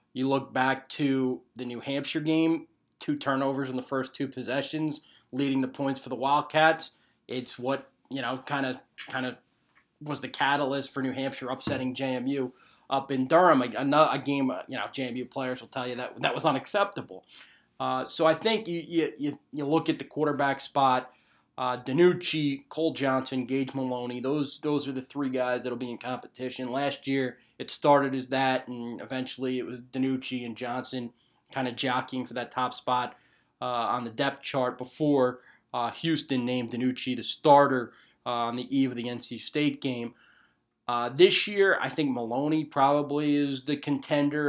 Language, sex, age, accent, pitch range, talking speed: English, male, 20-39, American, 125-140 Hz, 180 wpm